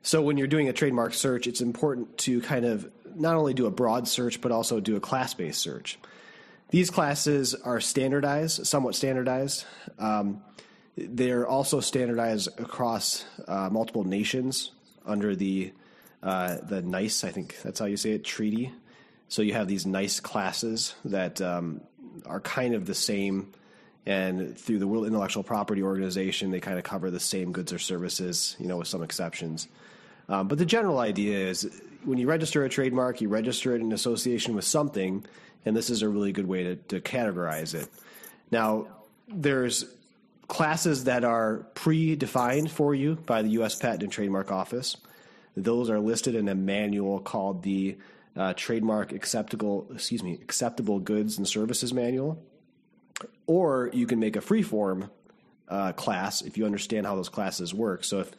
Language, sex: English, male